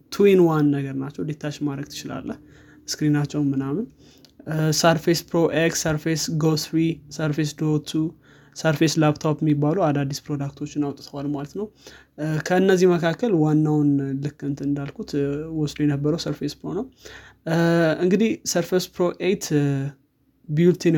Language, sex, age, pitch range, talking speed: Amharic, male, 20-39, 140-155 Hz, 135 wpm